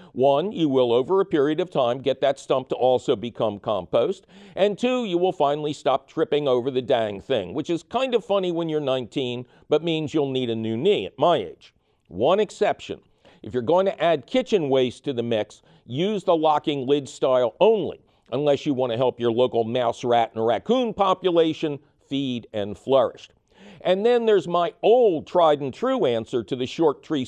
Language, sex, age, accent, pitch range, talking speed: English, male, 50-69, American, 130-185 Hz, 195 wpm